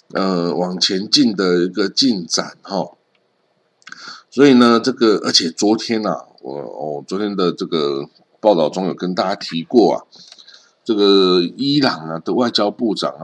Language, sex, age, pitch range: Chinese, male, 50-69, 90-120 Hz